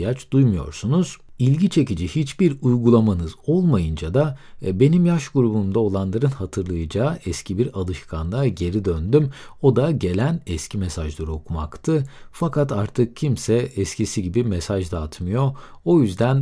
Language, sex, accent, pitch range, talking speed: Turkish, male, native, 100-150 Hz, 115 wpm